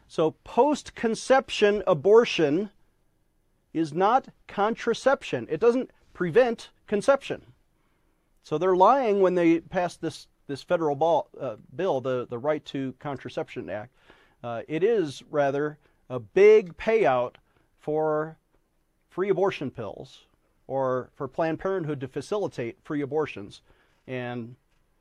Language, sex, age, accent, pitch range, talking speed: English, male, 40-59, American, 140-195 Hz, 115 wpm